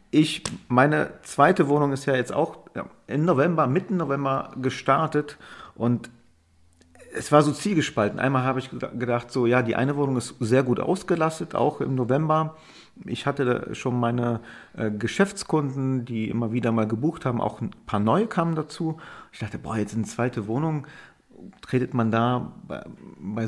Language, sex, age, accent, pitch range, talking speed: German, male, 40-59, German, 110-140 Hz, 160 wpm